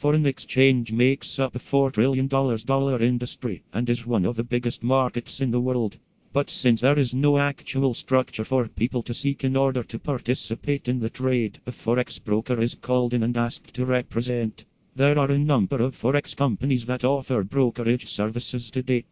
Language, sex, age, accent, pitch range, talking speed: English, male, 40-59, British, 120-135 Hz, 185 wpm